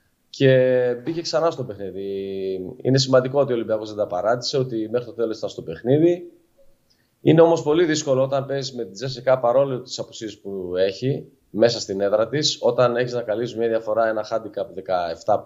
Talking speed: 180 wpm